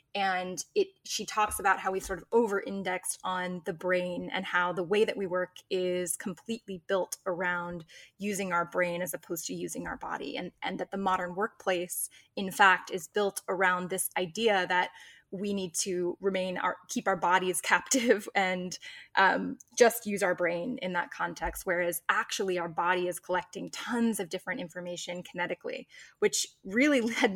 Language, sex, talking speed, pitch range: English, female, 175 wpm, 180-210 Hz